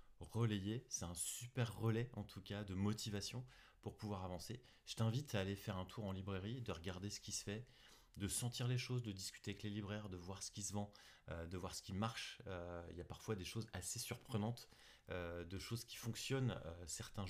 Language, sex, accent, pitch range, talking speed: French, male, French, 90-110 Hz, 225 wpm